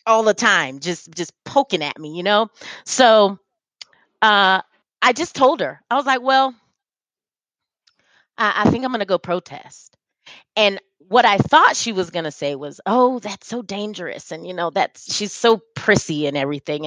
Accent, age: American, 30-49